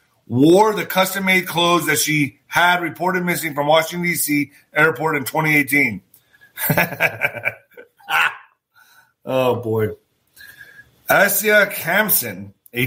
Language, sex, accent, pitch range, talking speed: English, male, American, 145-195 Hz, 95 wpm